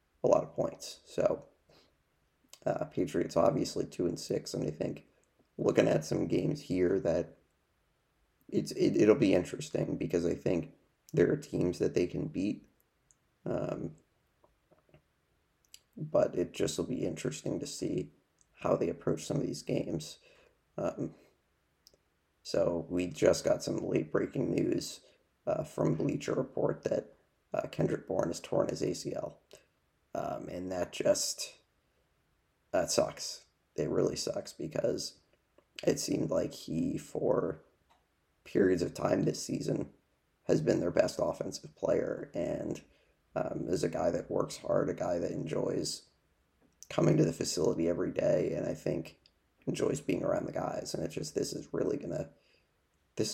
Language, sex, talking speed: English, male, 150 wpm